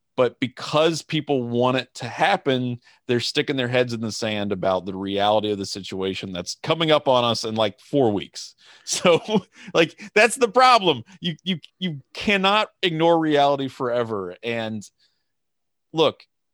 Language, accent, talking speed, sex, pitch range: English, American, 155 wpm, male, 105-150 Hz